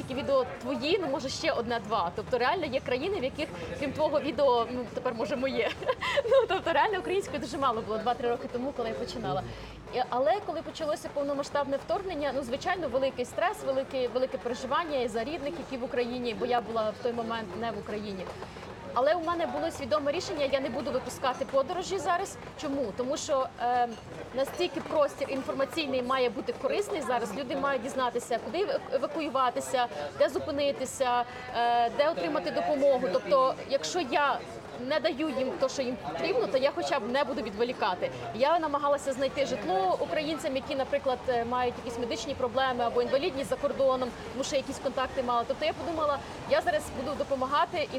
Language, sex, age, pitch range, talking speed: Ukrainian, female, 30-49, 250-305 Hz, 170 wpm